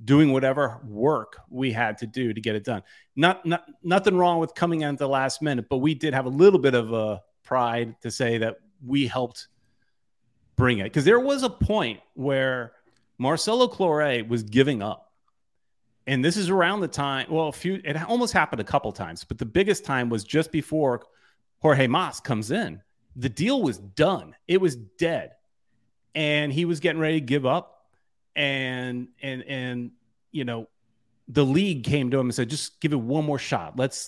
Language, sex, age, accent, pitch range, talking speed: English, male, 30-49, American, 120-155 Hz, 195 wpm